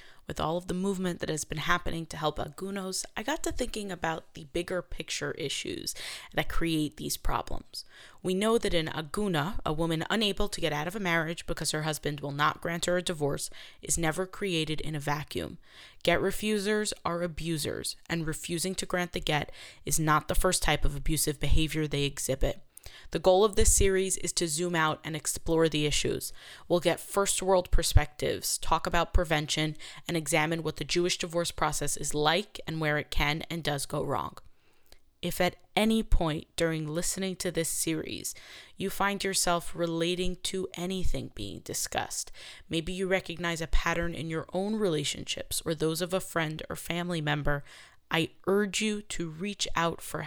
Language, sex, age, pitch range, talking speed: English, female, 20-39, 155-185 Hz, 185 wpm